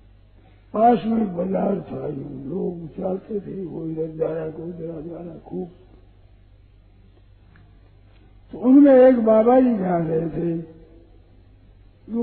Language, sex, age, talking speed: Hindi, male, 50-69, 115 wpm